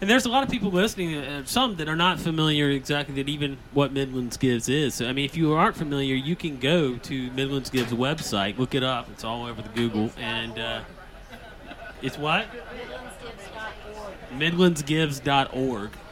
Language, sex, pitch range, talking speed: English, male, 120-165 Hz, 175 wpm